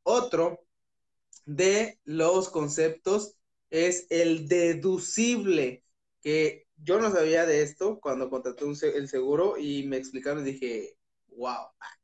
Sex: male